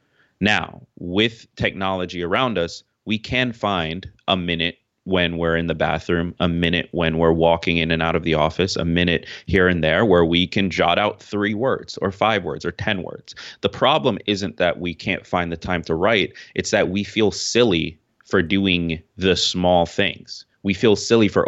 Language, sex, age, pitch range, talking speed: English, male, 30-49, 85-100 Hz, 195 wpm